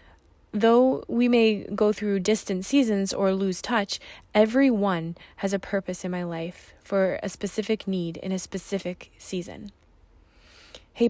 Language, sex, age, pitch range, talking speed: English, female, 20-39, 180-225 Hz, 140 wpm